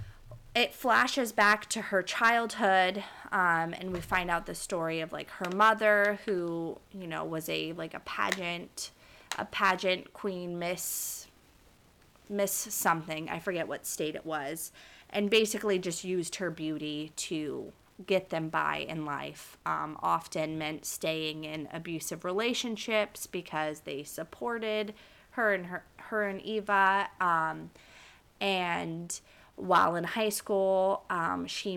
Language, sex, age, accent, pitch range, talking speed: English, female, 20-39, American, 160-205 Hz, 140 wpm